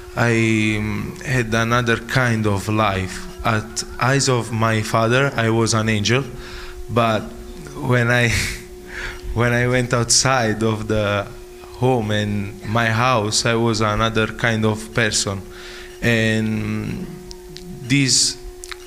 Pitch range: 110-125 Hz